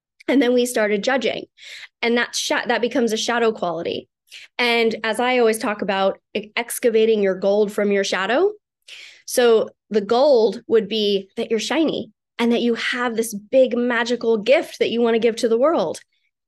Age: 20-39